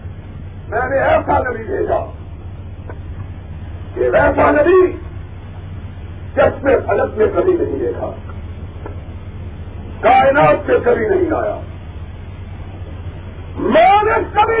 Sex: male